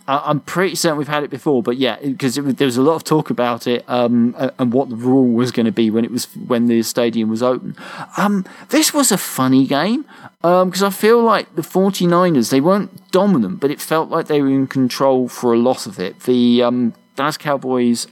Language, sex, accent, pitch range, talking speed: English, male, British, 120-155 Hz, 230 wpm